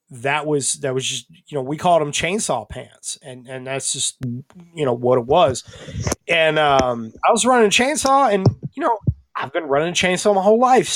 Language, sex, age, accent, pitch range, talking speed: English, male, 20-39, American, 130-170 Hz, 215 wpm